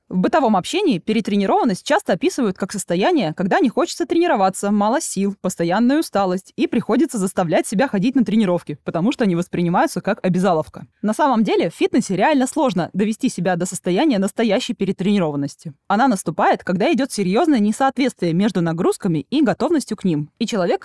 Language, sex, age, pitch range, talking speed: Russian, female, 20-39, 180-265 Hz, 160 wpm